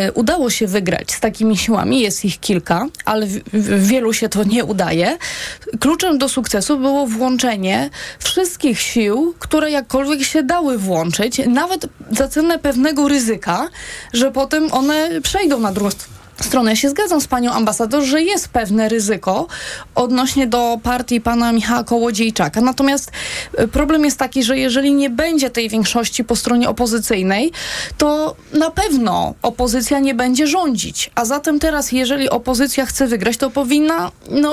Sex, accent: female, native